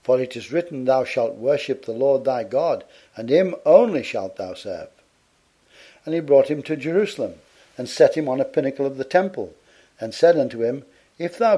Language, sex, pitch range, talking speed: English, male, 125-170 Hz, 195 wpm